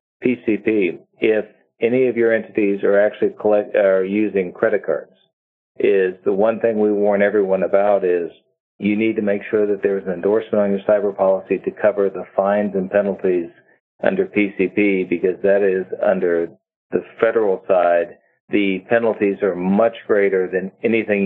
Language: English